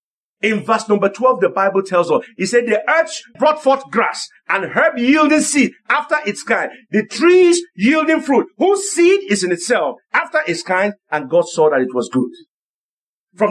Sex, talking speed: male, 185 wpm